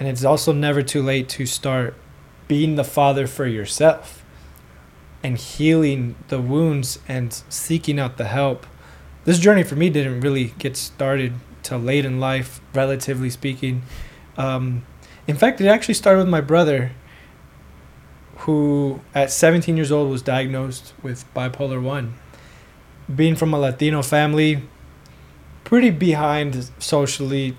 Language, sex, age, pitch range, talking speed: English, male, 20-39, 125-150 Hz, 135 wpm